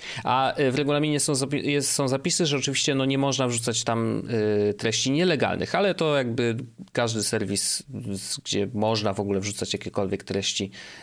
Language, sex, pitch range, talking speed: Polish, male, 100-135 Hz, 140 wpm